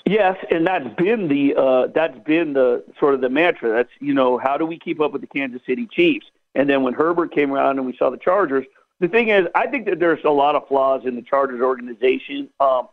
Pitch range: 140-195 Hz